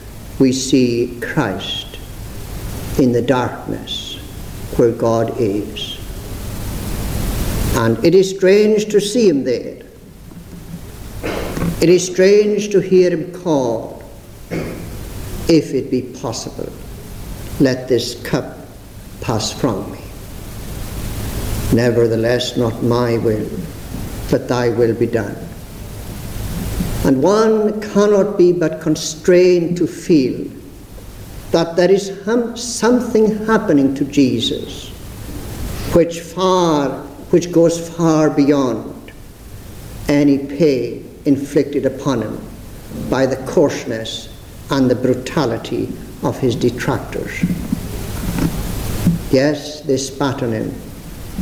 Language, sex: English, male